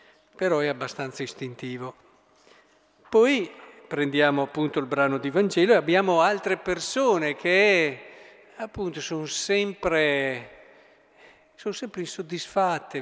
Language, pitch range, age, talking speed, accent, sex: Italian, 145-190 Hz, 50-69, 100 wpm, native, male